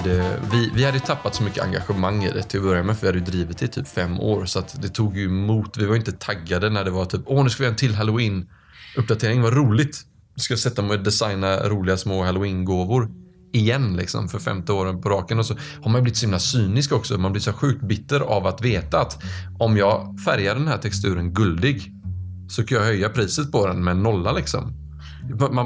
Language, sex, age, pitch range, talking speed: Swedish, male, 30-49, 95-125 Hz, 240 wpm